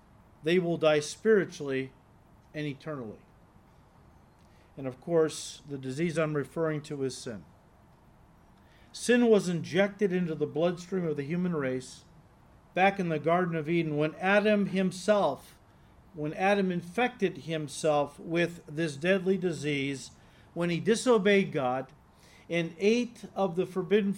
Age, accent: 50-69, American